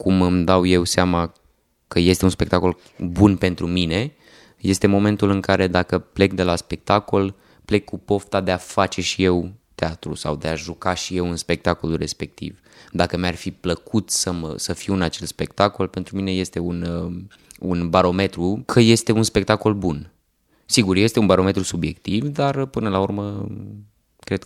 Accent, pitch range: native, 85-110 Hz